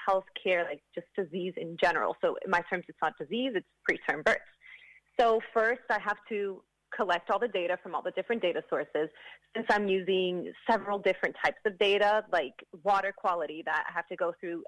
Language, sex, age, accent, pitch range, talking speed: English, female, 30-49, American, 175-210 Hz, 195 wpm